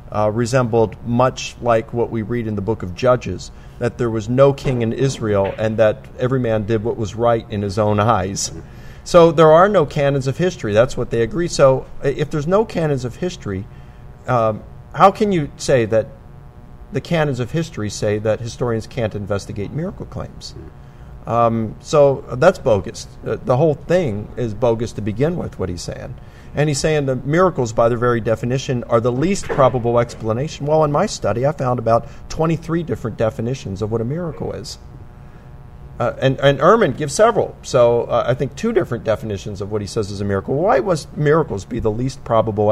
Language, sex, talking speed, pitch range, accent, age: English, male, 190 wpm, 110-140 Hz, American, 40-59